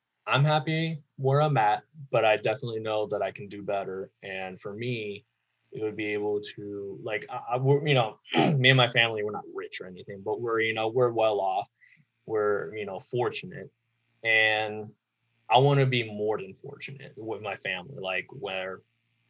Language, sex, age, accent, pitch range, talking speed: English, male, 20-39, American, 105-135 Hz, 180 wpm